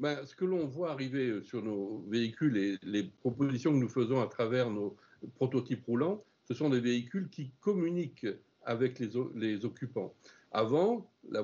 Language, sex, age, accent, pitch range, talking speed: French, male, 60-79, French, 115-155 Hz, 175 wpm